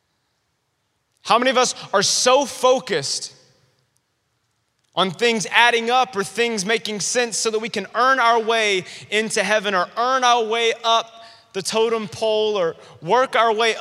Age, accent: 30-49, American